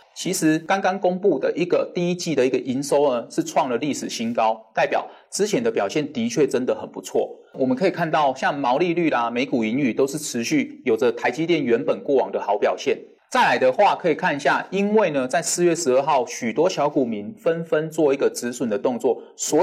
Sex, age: male, 30-49